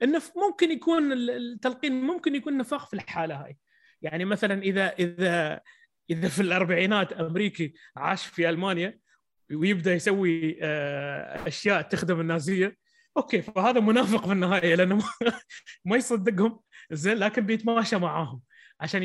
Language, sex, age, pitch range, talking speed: English, male, 20-39, 160-230 Hz, 125 wpm